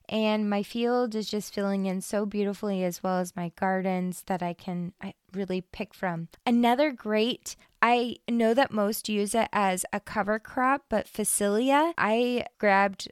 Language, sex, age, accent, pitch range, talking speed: English, female, 20-39, American, 190-220 Hz, 170 wpm